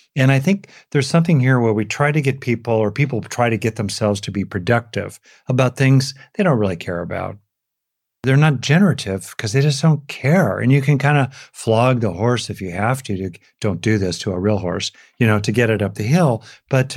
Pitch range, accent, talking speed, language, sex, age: 110-140 Hz, American, 230 wpm, English, male, 40-59